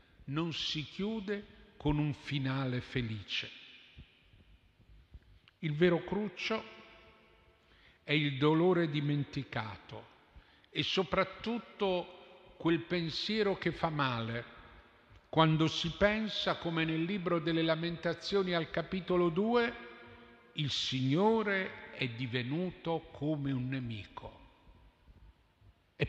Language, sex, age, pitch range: Italian, male, 50-69, 135-180 Hz